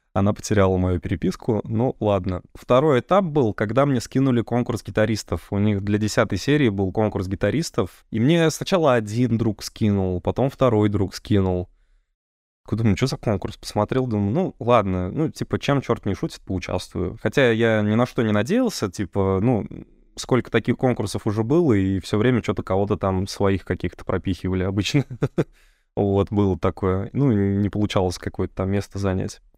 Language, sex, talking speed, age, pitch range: Russian, male, 165 wpm, 20-39, 100-125 Hz